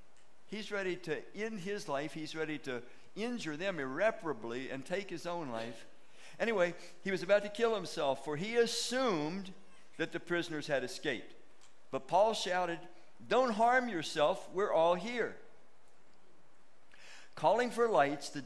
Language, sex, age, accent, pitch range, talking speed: English, male, 60-79, American, 135-195 Hz, 145 wpm